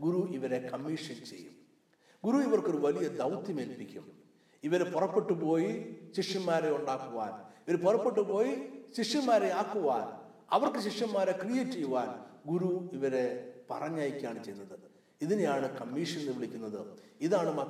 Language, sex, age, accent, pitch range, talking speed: English, male, 60-79, Indian, 130-210 Hz, 80 wpm